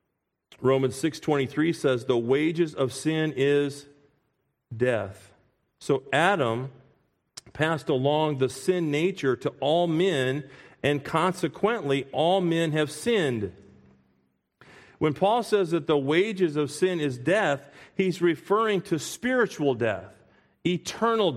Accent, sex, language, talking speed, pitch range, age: American, male, English, 115 wpm, 135-195 Hz, 40-59